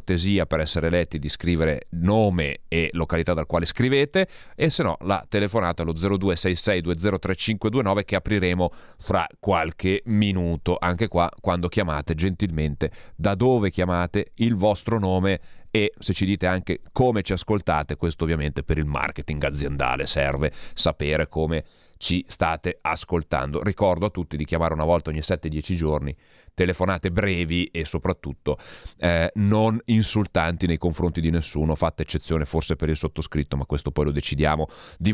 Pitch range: 80-105 Hz